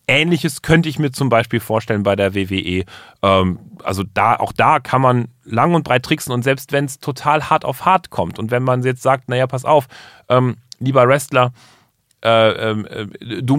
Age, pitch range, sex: 40-59, 120-155 Hz, male